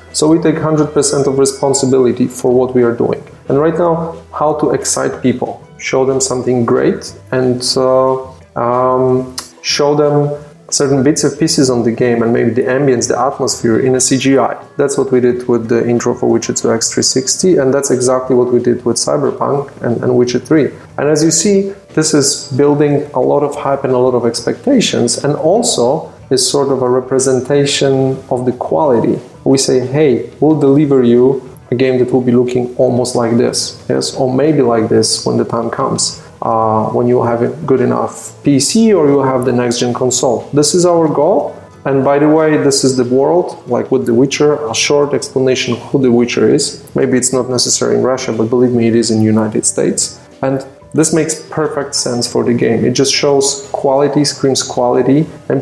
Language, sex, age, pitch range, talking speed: Russian, male, 30-49, 125-145 Hz, 195 wpm